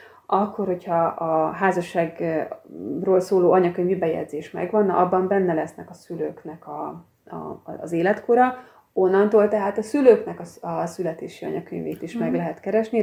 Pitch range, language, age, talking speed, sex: 175-215 Hz, Hungarian, 30-49, 130 wpm, female